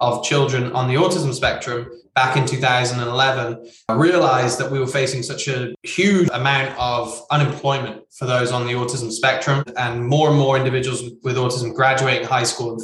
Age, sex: 20-39, male